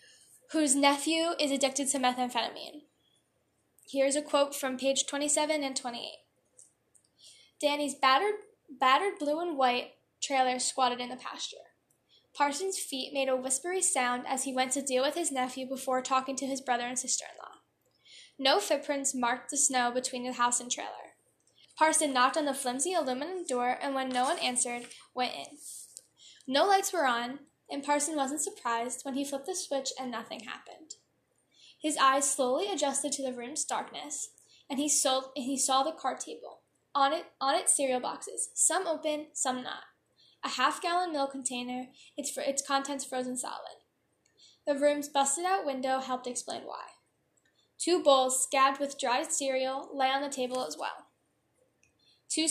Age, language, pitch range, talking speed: 10-29, English, 255-300 Hz, 160 wpm